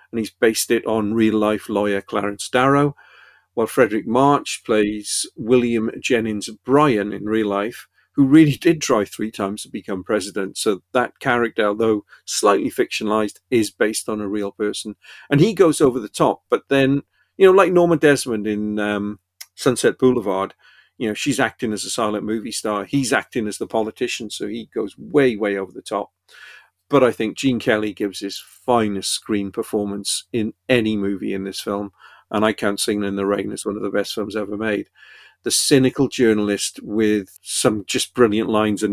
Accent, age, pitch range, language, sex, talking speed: British, 50-69, 105-125 Hz, English, male, 185 wpm